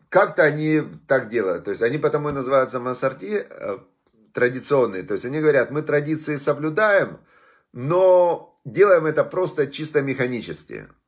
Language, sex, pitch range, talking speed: Russian, male, 120-150 Hz, 135 wpm